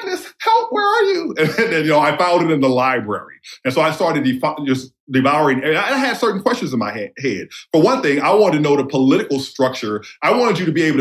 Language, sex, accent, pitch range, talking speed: English, male, American, 125-175 Hz, 250 wpm